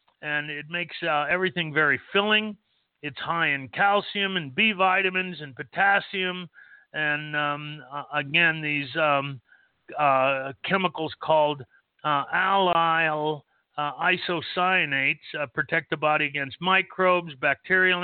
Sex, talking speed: male, 120 wpm